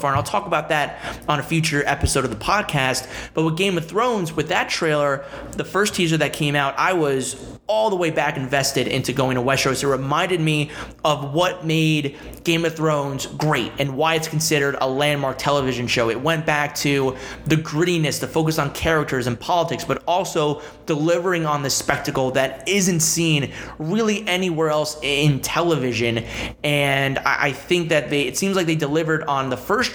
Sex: male